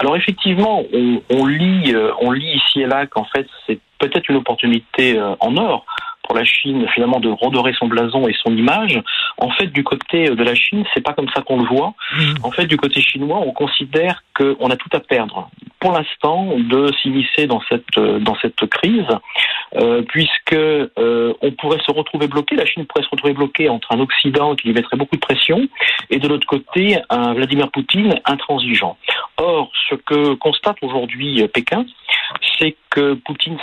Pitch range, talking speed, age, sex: 130-165 Hz, 185 wpm, 40-59, male